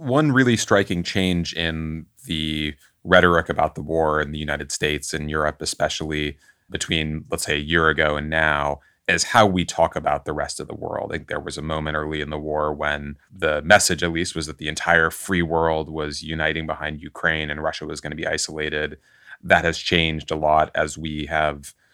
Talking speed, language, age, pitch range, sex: 205 wpm, English, 30-49, 75-85 Hz, male